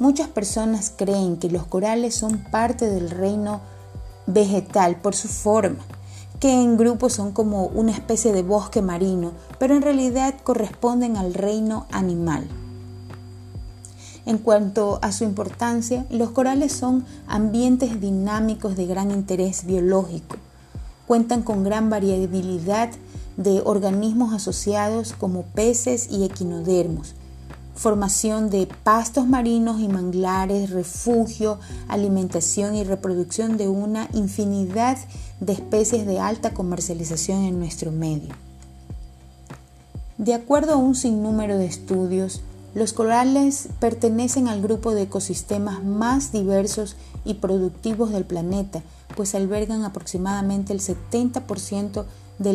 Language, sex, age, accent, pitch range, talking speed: Spanish, female, 30-49, Venezuelan, 180-225 Hz, 120 wpm